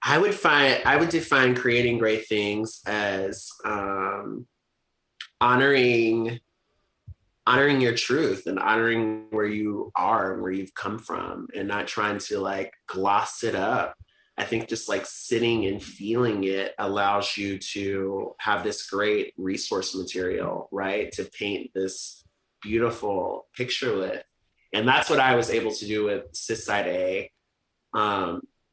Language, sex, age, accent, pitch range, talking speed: English, male, 30-49, American, 100-120 Hz, 145 wpm